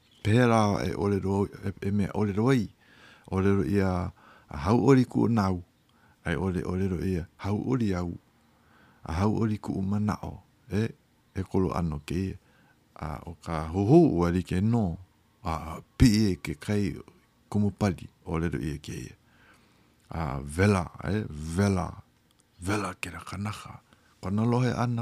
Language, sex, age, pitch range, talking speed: English, male, 60-79, 90-110 Hz, 30 wpm